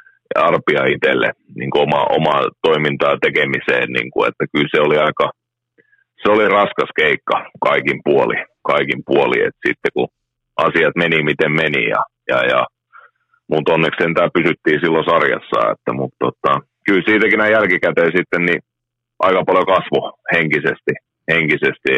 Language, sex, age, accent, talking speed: Finnish, male, 30-49, native, 140 wpm